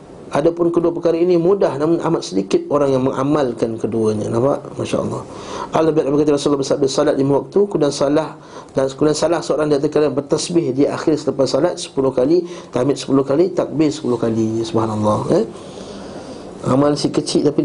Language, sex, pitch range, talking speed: Malay, male, 120-170 Hz, 160 wpm